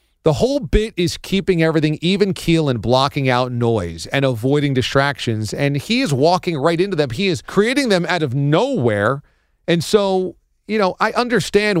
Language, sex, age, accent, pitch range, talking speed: English, male, 40-59, American, 130-175 Hz, 180 wpm